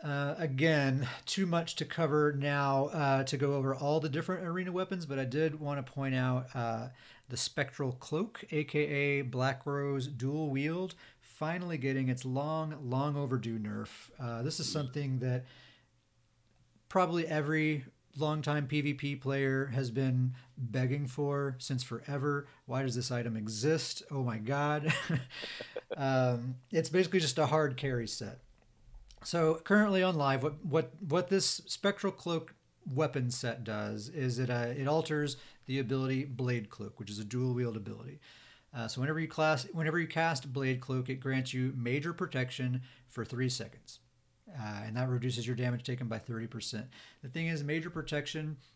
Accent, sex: American, male